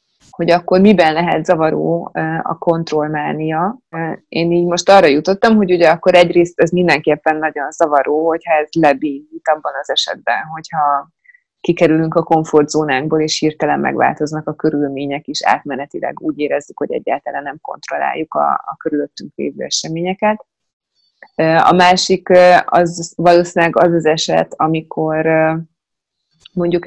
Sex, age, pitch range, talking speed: female, 20-39, 155-175 Hz, 125 wpm